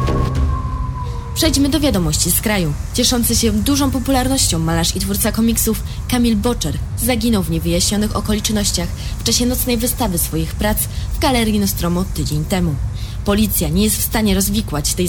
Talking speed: 145 wpm